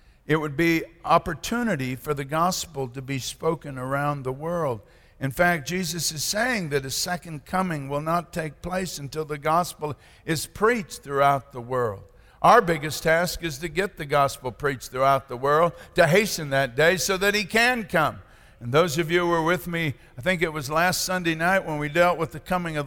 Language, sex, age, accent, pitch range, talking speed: English, male, 60-79, American, 135-180 Hz, 200 wpm